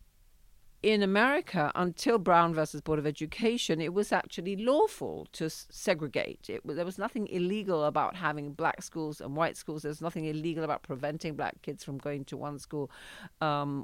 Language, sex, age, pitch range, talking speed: English, female, 50-69, 150-195 Hz, 180 wpm